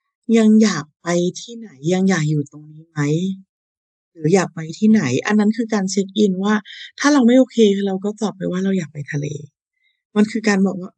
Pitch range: 175-225 Hz